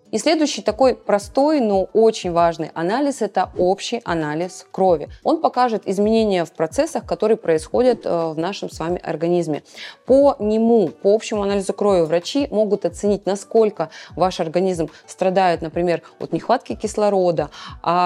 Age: 20-39